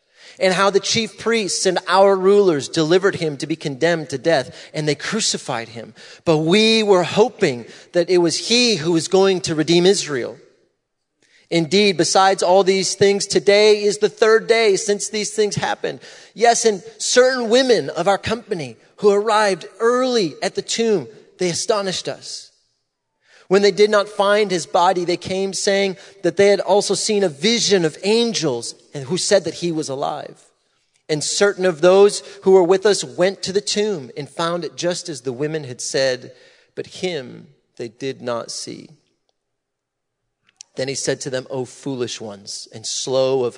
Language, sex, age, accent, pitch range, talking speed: English, male, 30-49, American, 150-205 Hz, 175 wpm